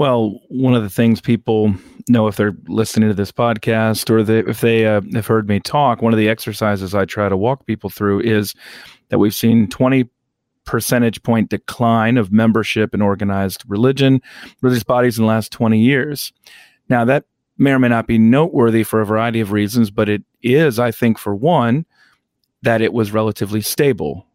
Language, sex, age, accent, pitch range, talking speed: English, male, 40-59, American, 105-120 Hz, 190 wpm